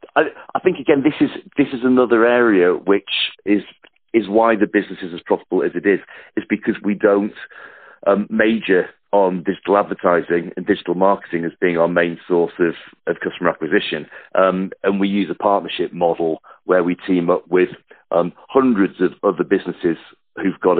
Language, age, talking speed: English, 40-59, 180 wpm